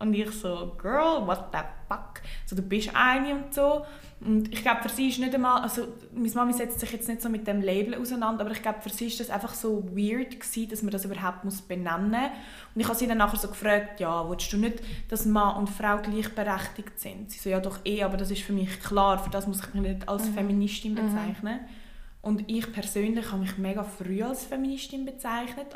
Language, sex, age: German, female, 20-39